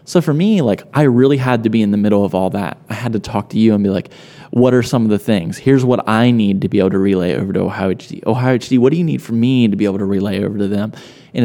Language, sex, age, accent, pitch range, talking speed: English, male, 20-39, American, 100-130 Hz, 315 wpm